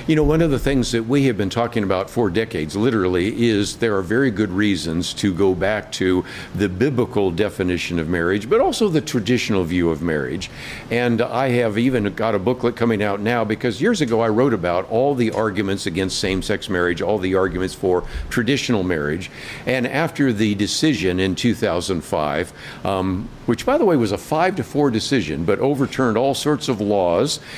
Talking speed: 190 wpm